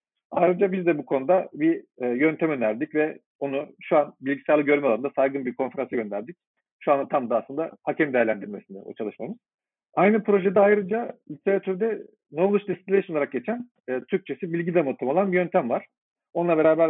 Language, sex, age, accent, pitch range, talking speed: Turkish, male, 50-69, native, 150-200 Hz, 165 wpm